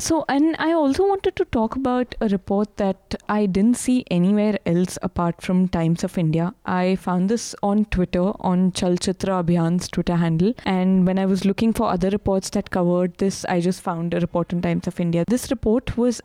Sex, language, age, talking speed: female, English, 20-39, 205 wpm